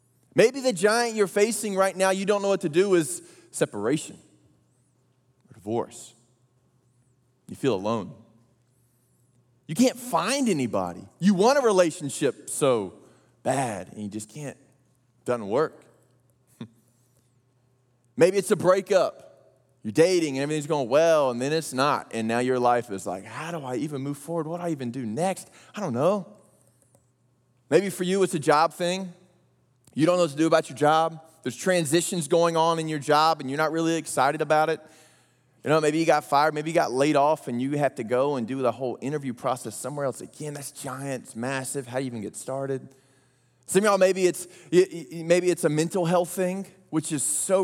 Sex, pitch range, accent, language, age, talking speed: male, 125-170 Hz, American, English, 20-39, 185 wpm